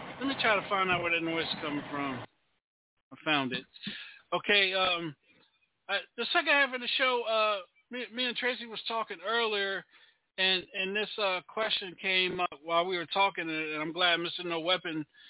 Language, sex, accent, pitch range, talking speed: English, male, American, 170-220 Hz, 190 wpm